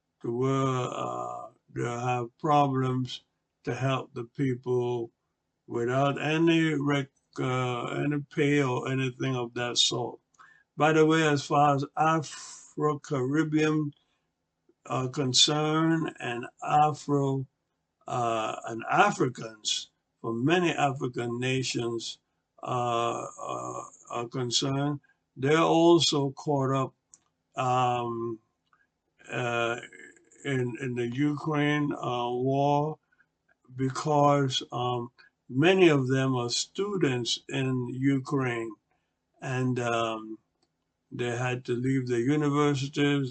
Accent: American